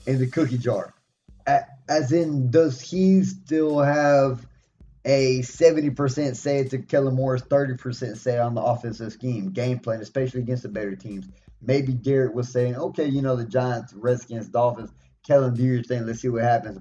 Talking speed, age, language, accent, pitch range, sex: 170 wpm, 20-39, English, American, 120-140 Hz, male